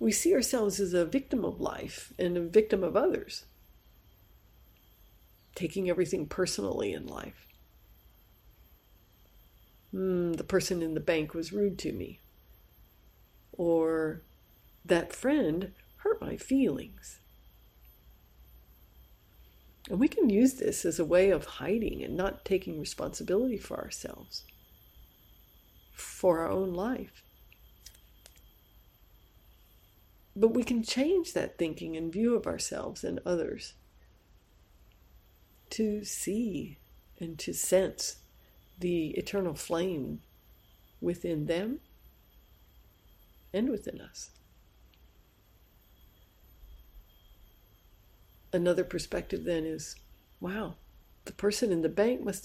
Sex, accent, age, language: female, American, 60-79, Japanese